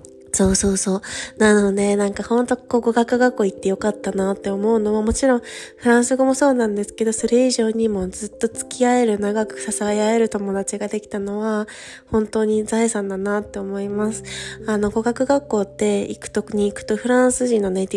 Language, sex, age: Japanese, female, 20-39